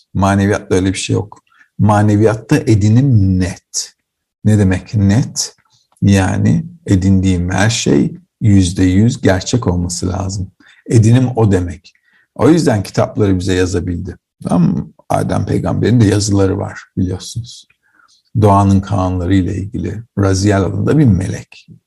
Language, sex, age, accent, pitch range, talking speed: Turkish, male, 50-69, native, 95-110 Hz, 115 wpm